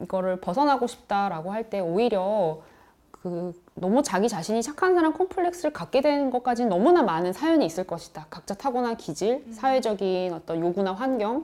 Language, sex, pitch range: Korean, female, 175-235 Hz